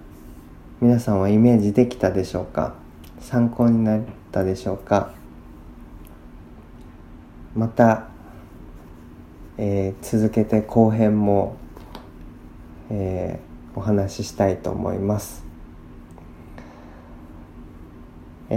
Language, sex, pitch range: Japanese, male, 80-110 Hz